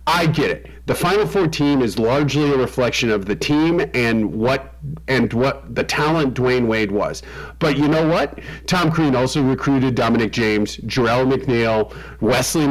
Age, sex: 40-59, male